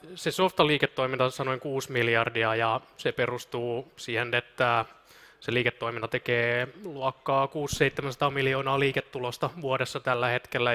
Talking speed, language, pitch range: 115 wpm, Finnish, 125-155 Hz